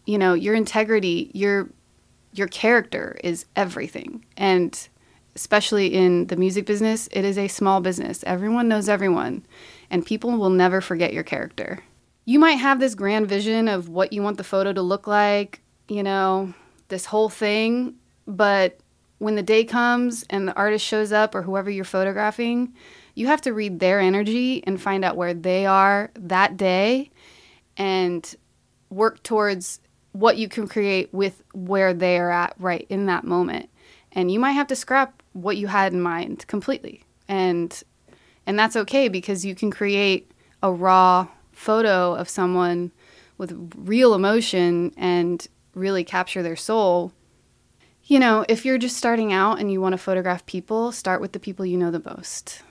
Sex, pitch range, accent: female, 185-220 Hz, American